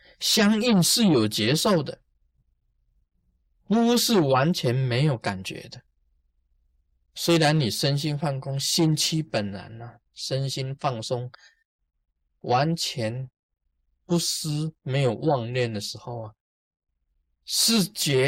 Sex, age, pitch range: male, 20-39, 100-160 Hz